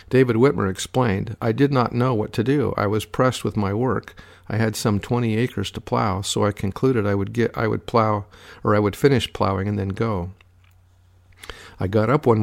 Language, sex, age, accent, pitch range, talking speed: English, male, 50-69, American, 100-115 Hz, 215 wpm